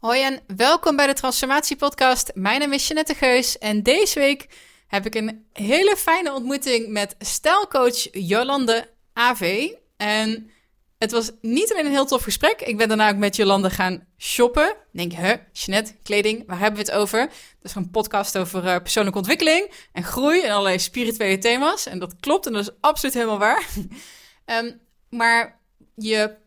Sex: female